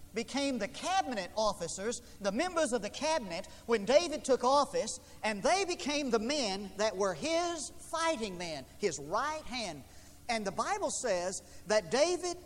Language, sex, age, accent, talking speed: English, male, 50-69, American, 155 wpm